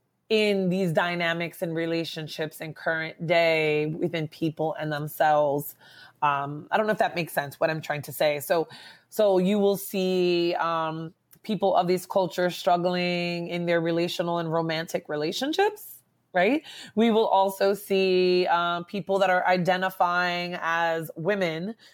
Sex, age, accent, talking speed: female, 20-39, American, 150 wpm